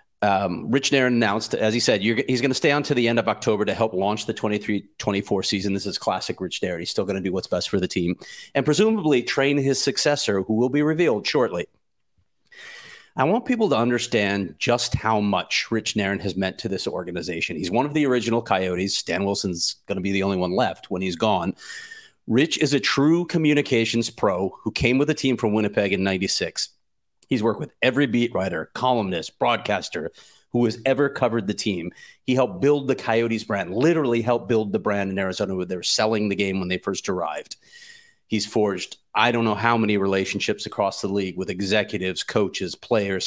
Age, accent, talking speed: 30-49, American, 205 wpm